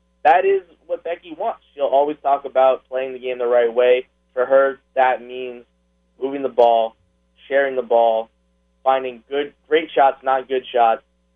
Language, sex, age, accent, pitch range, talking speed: English, male, 20-39, American, 110-140 Hz, 170 wpm